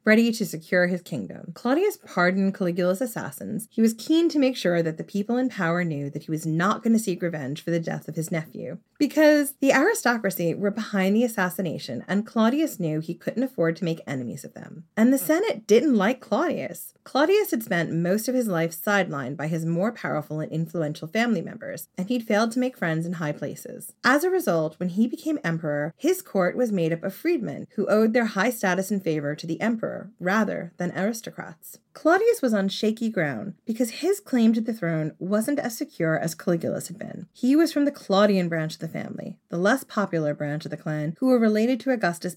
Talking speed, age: 210 wpm, 30-49